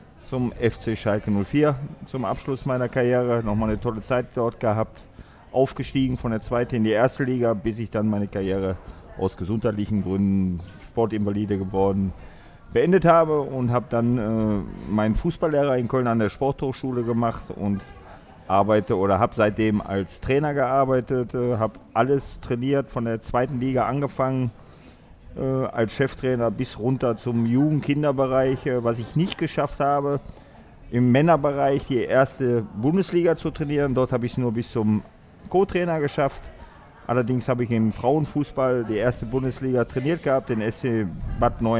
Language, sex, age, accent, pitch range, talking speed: German, male, 40-59, German, 110-140 Hz, 150 wpm